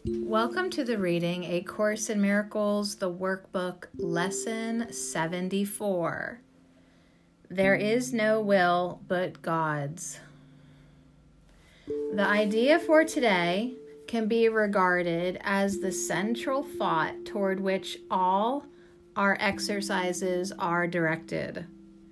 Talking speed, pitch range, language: 100 wpm, 160-210 Hz, English